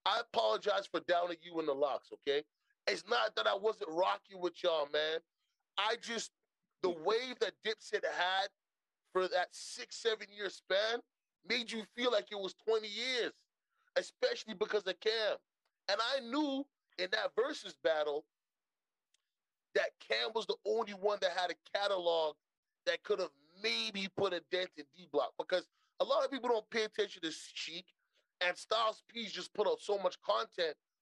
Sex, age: male, 30-49